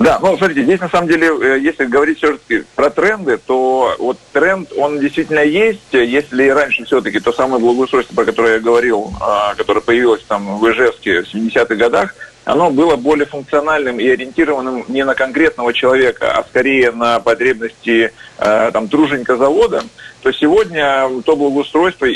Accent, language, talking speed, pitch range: native, Russian, 155 wpm, 115-145 Hz